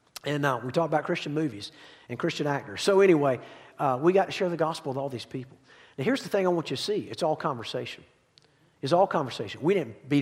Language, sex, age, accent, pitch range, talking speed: English, male, 50-69, American, 140-185 Hz, 240 wpm